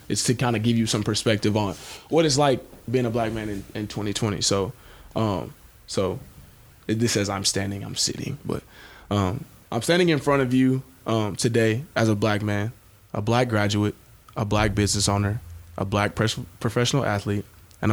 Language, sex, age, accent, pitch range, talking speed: English, male, 20-39, American, 100-125 Hz, 185 wpm